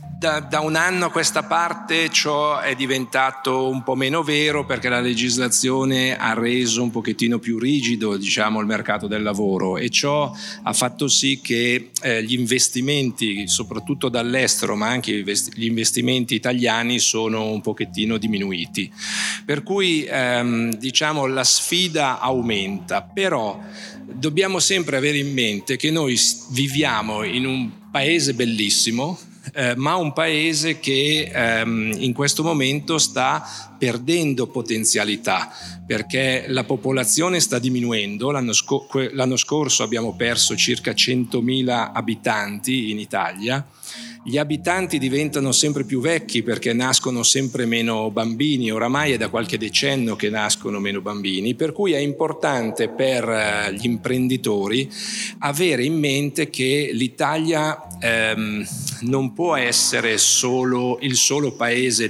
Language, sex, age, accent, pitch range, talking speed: Italian, male, 50-69, native, 115-145 Hz, 130 wpm